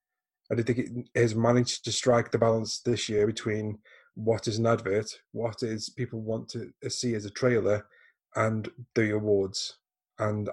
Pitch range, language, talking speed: 105-120 Hz, English, 170 wpm